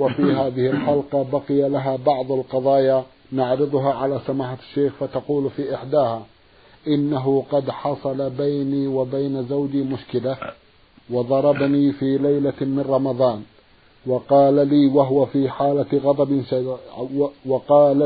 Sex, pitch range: male, 130-145 Hz